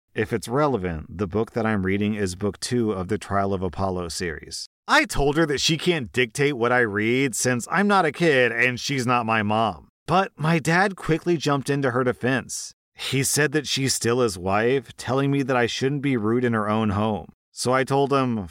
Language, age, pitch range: English, 40-59, 110-150 Hz